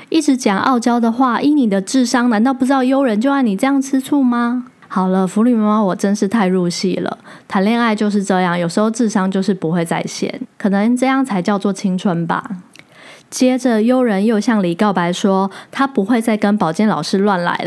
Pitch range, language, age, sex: 190-250 Hz, Chinese, 20-39, female